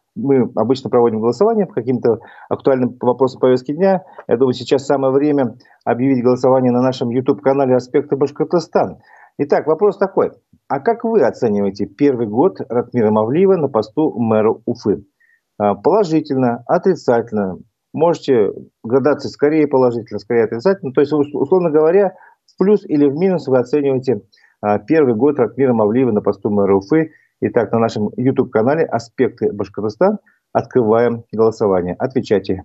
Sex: male